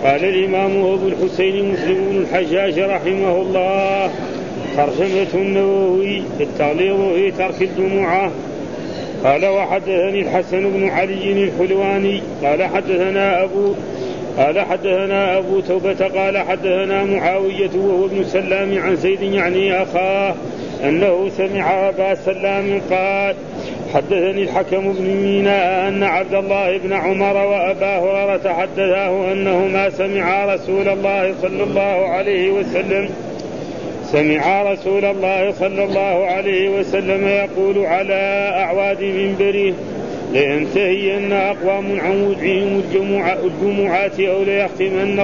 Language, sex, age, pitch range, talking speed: Arabic, male, 40-59, 185-195 Hz, 115 wpm